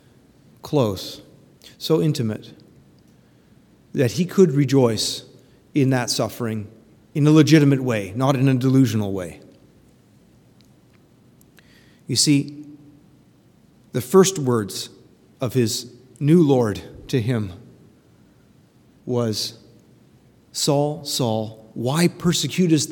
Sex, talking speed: male, 90 wpm